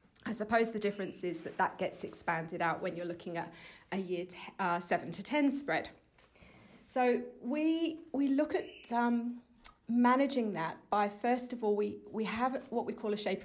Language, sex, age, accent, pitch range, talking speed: English, female, 40-59, British, 195-245 Hz, 185 wpm